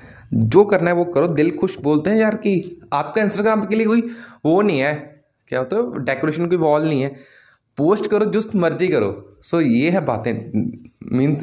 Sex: male